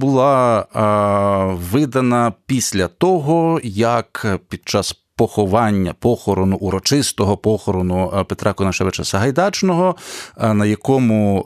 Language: Ukrainian